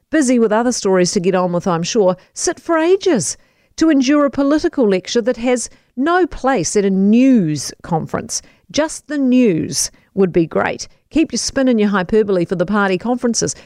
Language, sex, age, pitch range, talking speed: English, female, 50-69, 185-255 Hz, 185 wpm